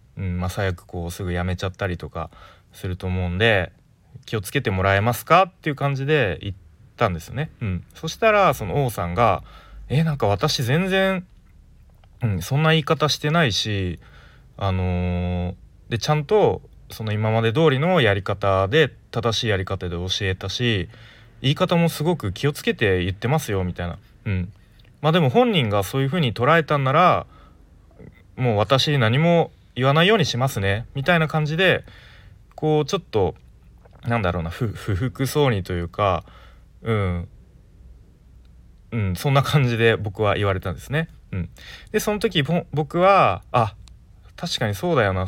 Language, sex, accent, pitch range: Japanese, male, native, 95-150 Hz